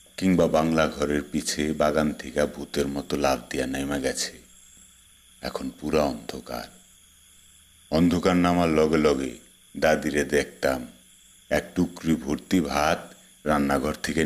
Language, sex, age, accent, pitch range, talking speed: Bengali, male, 50-69, native, 75-90 Hz, 115 wpm